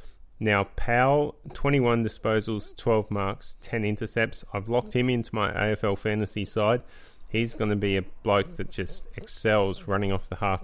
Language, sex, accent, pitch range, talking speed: English, male, Australian, 95-115 Hz, 165 wpm